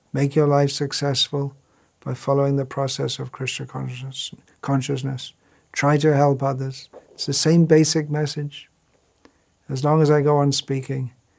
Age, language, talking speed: 60-79, English, 140 wpm